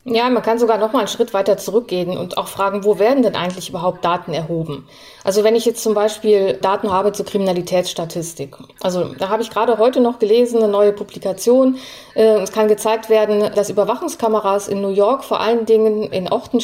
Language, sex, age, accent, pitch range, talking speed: German, female, 30-49, German, 195-230 Hz, 200 wpm